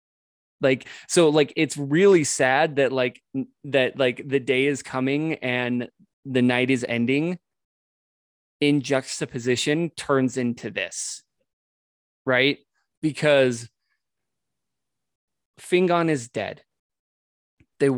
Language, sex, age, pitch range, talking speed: English, male, 20-39, 125-150 Hz, 100 wpm